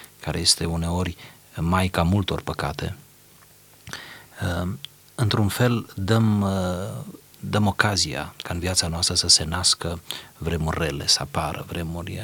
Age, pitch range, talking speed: 30-49, 85-100 Hz, 120 wpm